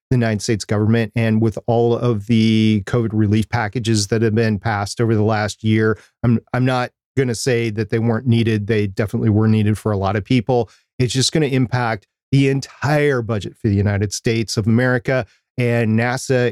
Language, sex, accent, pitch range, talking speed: English, male, American, 110-130 Hz, 200 wpm